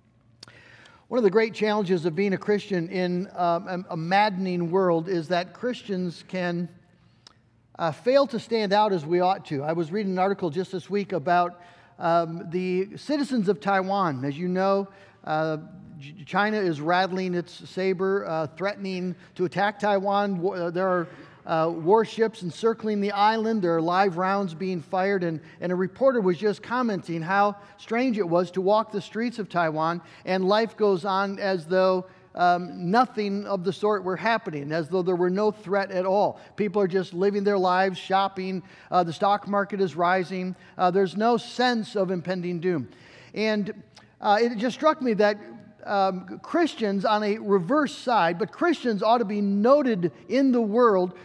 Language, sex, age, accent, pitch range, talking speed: English, male, 50-69, American, 180-220 Hz, 175 wpm